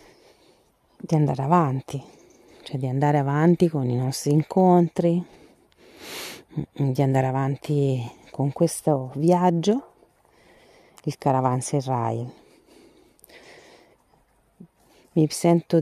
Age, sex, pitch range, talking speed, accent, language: 40-59, female, 135-165 Hz, 85 wpm, native, Italian